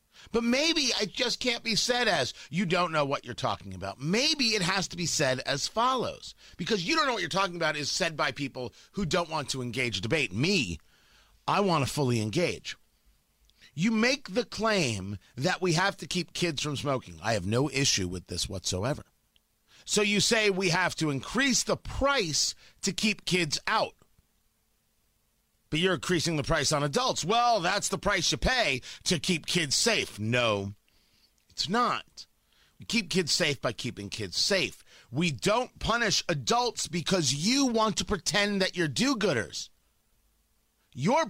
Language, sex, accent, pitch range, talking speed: English, male, American, 130-210 Hz, 175 wpm